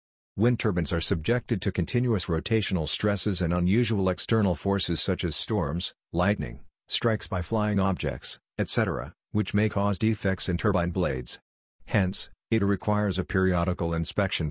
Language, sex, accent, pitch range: English, male, American, 90-105 Hz